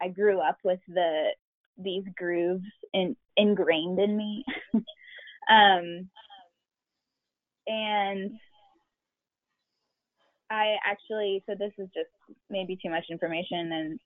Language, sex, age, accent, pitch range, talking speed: English, female, 10-29, American, 175-230 Hz, 100 wpm